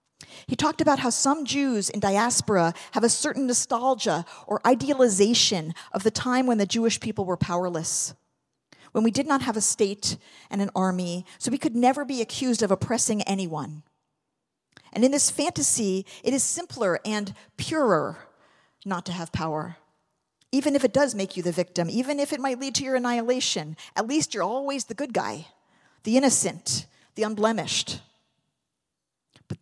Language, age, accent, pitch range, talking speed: English, 40-59, American, 190-270 Hz, 170 wpm